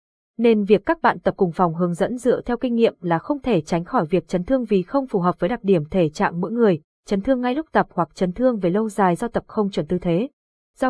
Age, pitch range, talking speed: 20-39, 185-235 Hz, 275 wpm